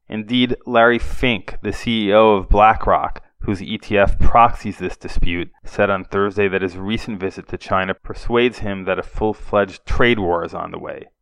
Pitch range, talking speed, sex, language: 95-115 Hz, 170 wpm, male, English